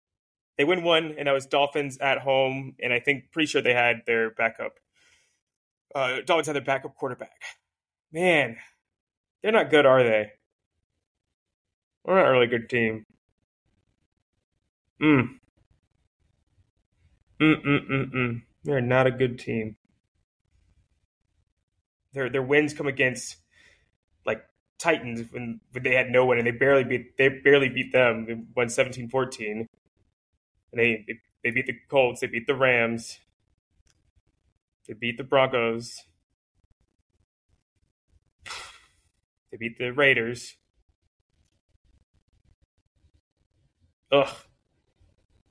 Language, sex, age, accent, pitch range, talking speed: English, male, 20-39, American, 105-145 Hz, 120 wpm